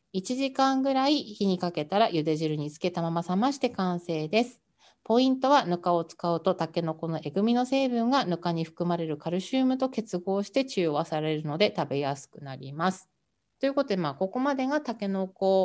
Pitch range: 165-230 Hz